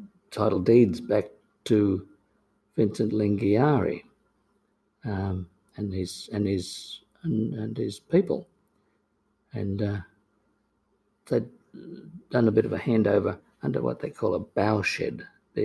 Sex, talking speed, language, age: male, 125 wpm, English, 50-69